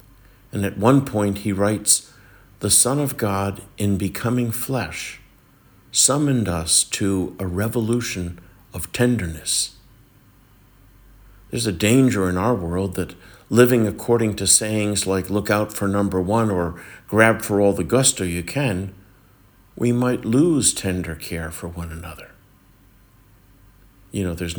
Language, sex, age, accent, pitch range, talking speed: English, male, 60-79, American, 90-115 Hz, 135 wpm